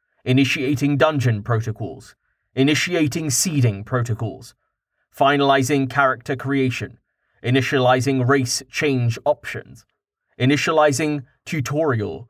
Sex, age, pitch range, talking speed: male, 30-49, 120-145 Hz, 75 wpm